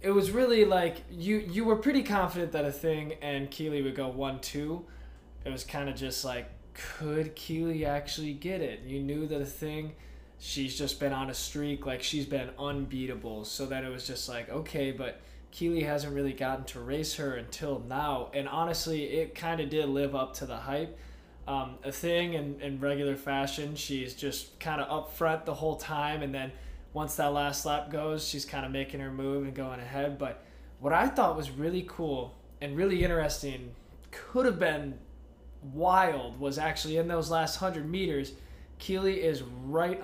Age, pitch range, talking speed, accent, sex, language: 20-39, 135-160 Hz, 190 wpm, American, male, English